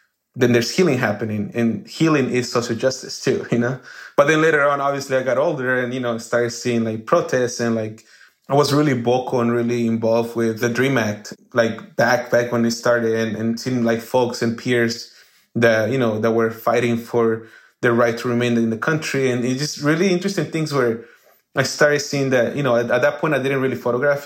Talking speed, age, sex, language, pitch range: 220 wpm, 20-39, male, English, 115-135 Hz